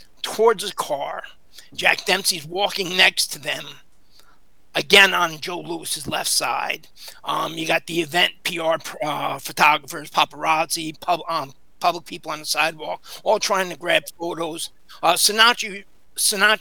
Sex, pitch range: male, 165-210 Hz